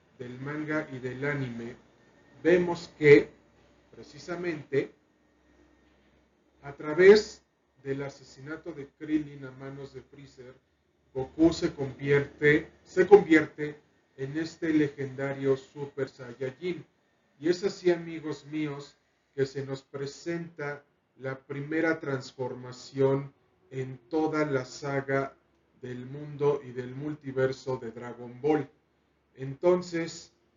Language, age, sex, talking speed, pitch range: Spanish, 40-59, male, 100 wpm, 130-155 Hz